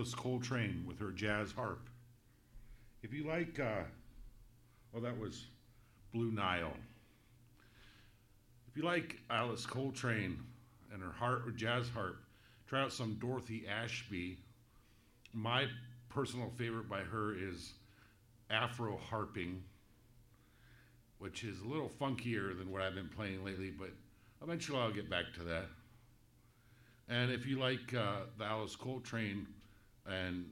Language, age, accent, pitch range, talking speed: English, 50-69, American, 100-120 Hz, 130 wpm